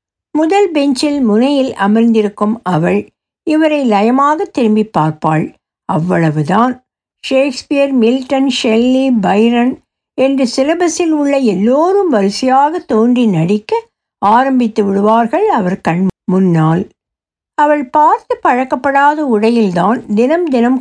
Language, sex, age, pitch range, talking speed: Tamil, female, 60-79, 210-300 Hz, 90 wpm